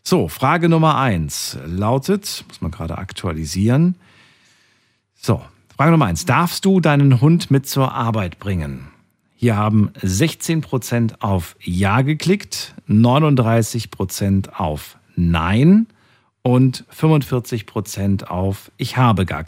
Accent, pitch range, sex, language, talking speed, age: German, 100-135 Hz, male, German, 110 wpm, 50-69